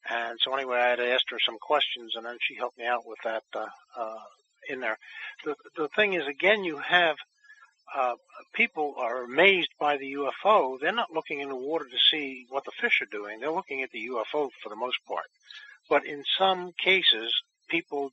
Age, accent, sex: 60-79, American, male